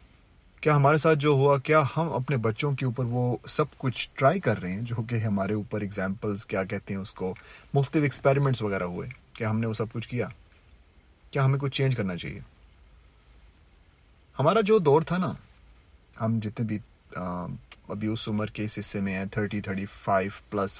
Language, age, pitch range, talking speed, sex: Urdu, 30-49, 95-130 Hz, 180 wpm, male